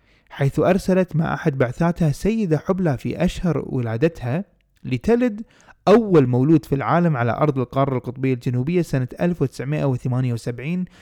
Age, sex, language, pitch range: 20-39, male, Arabic, 125-170 Hz